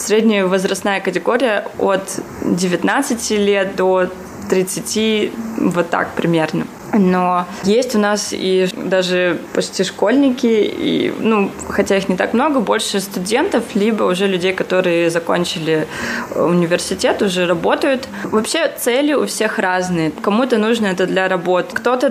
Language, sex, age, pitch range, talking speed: Russian, female, 20-39, 185-220 Hz, 130 wpm